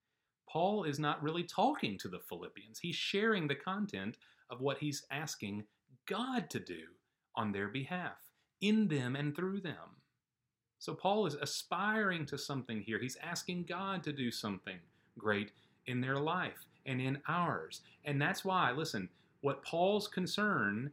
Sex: male